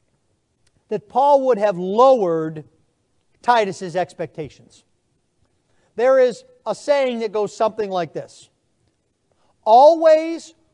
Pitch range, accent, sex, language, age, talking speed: 185-280 Hz, American, male, English, 40-59, 95 wpm